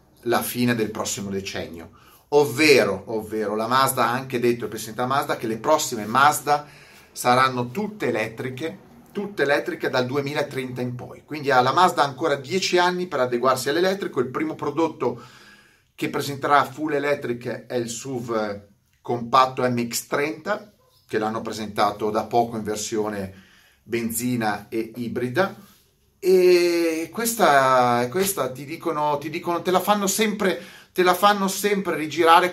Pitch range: 125-170 Hz